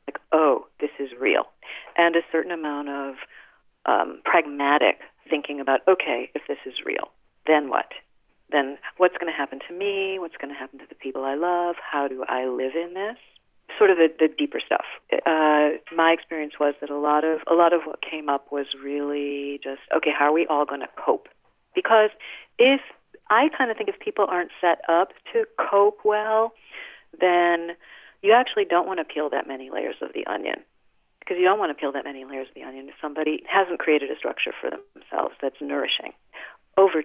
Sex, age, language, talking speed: female, 40-59, English, 200 wpm